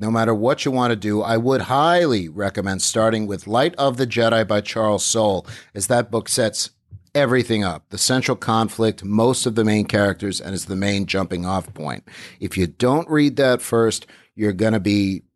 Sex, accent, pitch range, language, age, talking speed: male, American, 100-135 Hz, English, 50-69, 200 wpm